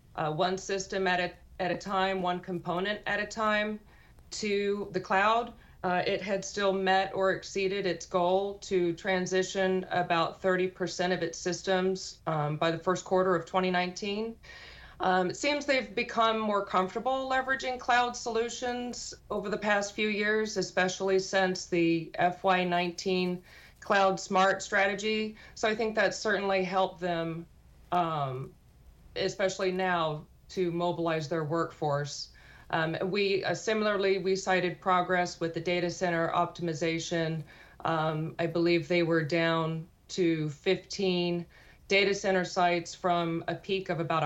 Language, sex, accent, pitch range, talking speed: English, female, American, 170-200 Hz, 140 wpm